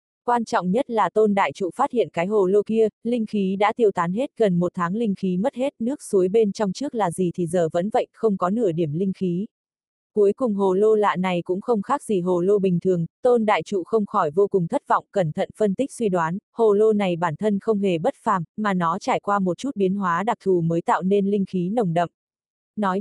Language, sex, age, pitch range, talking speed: Vietnamese, female, 20-39, 180-220 Hz, 260 wpm